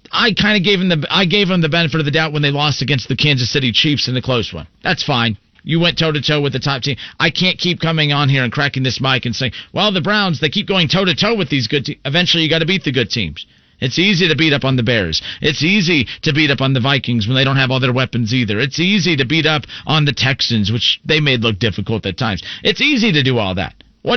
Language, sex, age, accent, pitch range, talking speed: English, male, 40-59, American, 130-175 Hz, 270 wpm